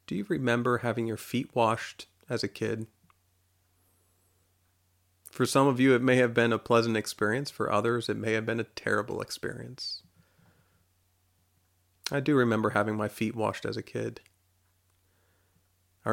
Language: English